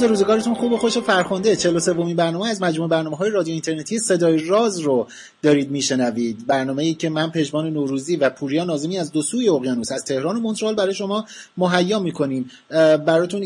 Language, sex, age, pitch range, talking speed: Persian, male, 30-49, 135-180 Hz, 185 wpm